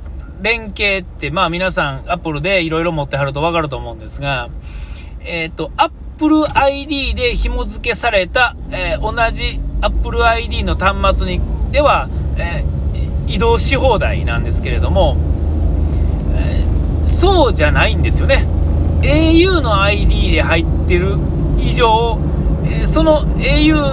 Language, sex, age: Japanese, male, 40-59